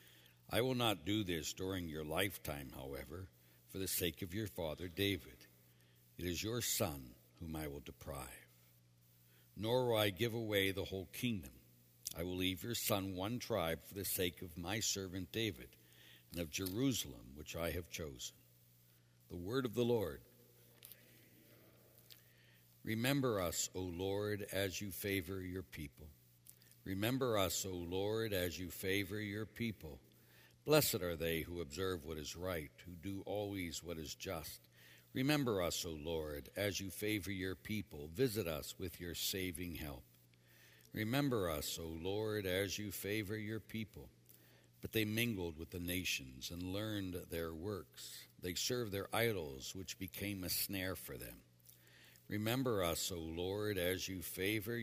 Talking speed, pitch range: 155 wpm, 70-105 Hz